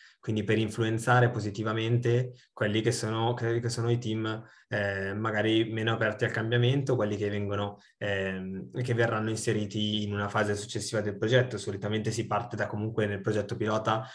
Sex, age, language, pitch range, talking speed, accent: male, 20-39, Italian, 105-120 Hz, 160 wpm, native